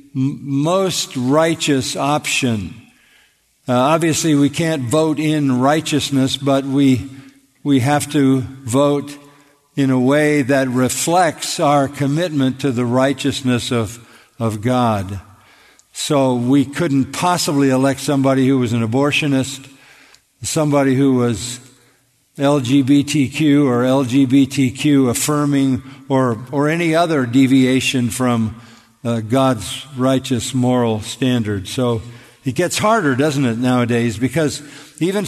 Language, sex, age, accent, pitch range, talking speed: English, male, 50-69, American, 125-145 Hz, 110 wpm